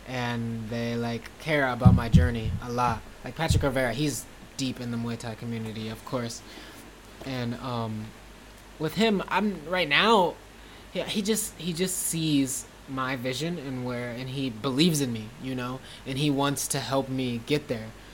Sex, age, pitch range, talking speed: male, 20-39, 115-140 Hz, 175 wpm